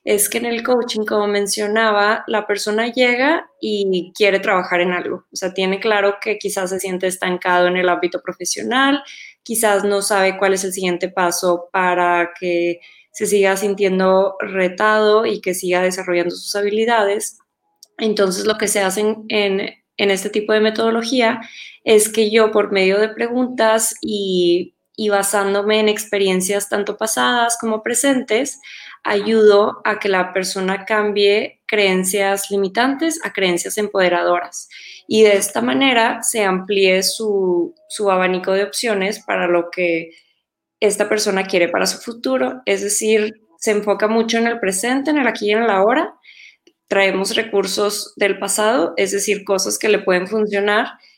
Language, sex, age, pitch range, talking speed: Spanish, female, 20-39, 190-220 Hz, 155 wpm